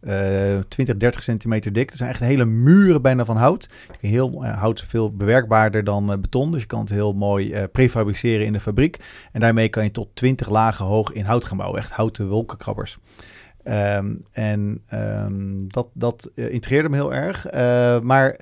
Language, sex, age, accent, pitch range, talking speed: Dutch, male, 40-59, Dutch, 105-130 Hz, 200 wpm